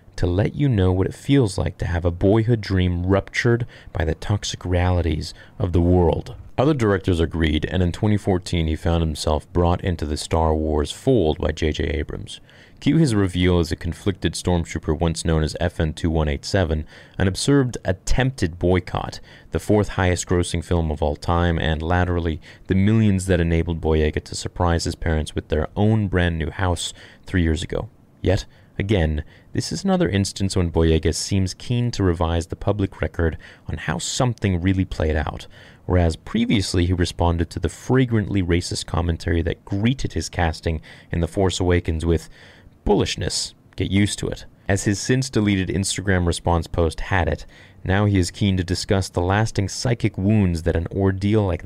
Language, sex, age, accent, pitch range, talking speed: English, male, 30-49, American, 80-105 Hz, 170 wpm